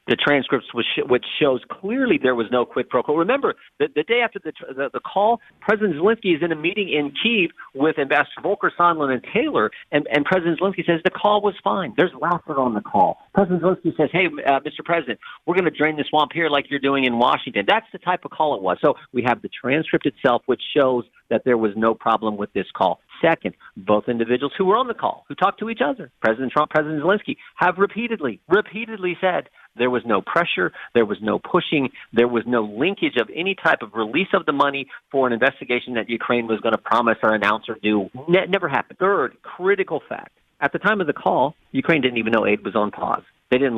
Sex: male